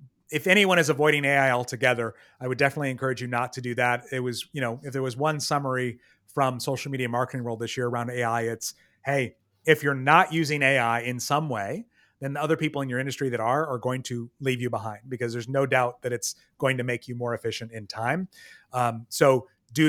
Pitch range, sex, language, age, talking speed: 120-155 Hz, male, English, 30-49, 225 wpm